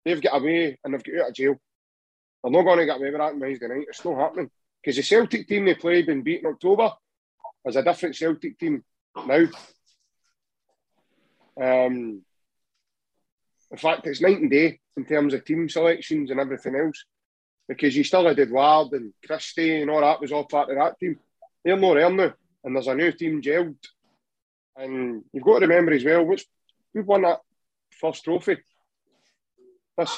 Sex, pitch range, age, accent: male, 145-185 Hz, 30-49, British